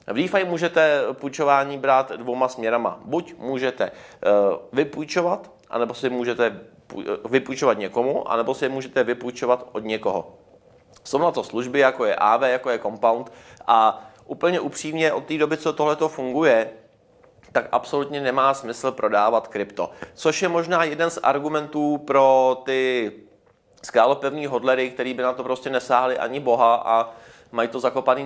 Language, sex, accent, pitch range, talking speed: Czech, male, native, 115-135 Hz, 150 wpm